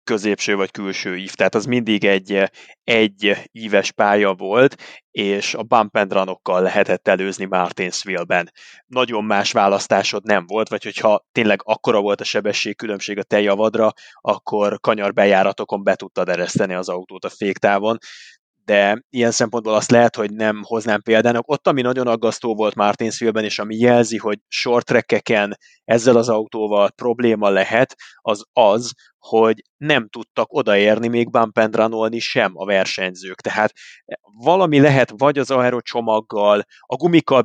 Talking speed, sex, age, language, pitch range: 145 wpm, male, 20-39, Hungarian, 100-120 Hz